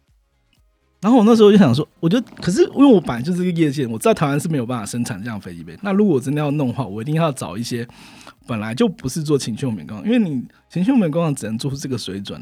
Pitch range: 125-180 Hz